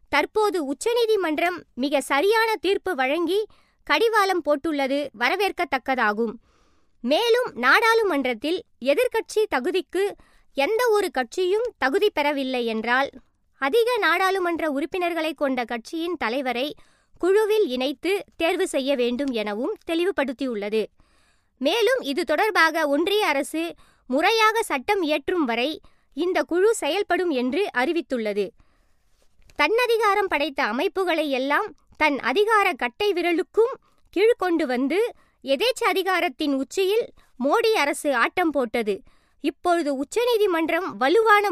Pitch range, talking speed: 280-405 Hz, 90 wpm